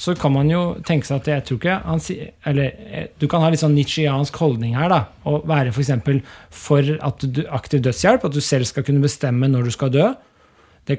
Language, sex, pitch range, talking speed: English, male, 135-160 Hz, 215 wpm